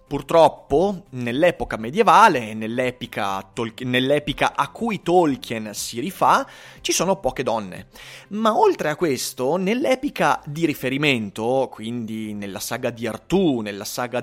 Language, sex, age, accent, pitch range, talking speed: Italian, male, 30-49, native, 120-190 Hz, 120 wpm